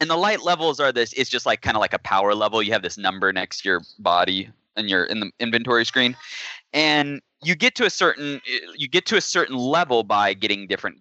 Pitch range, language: 95-140 Hz, English